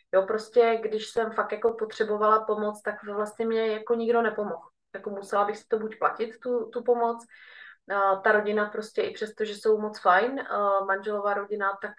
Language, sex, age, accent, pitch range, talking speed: Czech, female, 20-39, native, 190-235 Hz, 190 wpm